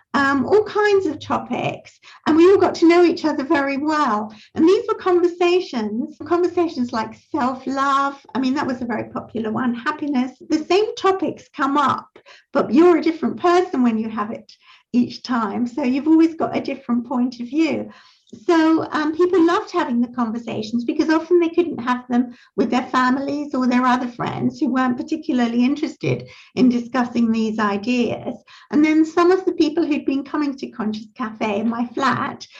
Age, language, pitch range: 60-79, English, 250-330 Hz